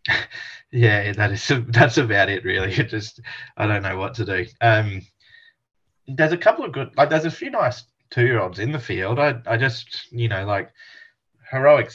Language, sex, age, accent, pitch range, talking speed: English, male, 20-39, Australian, 95-115 Hz, 185 wpm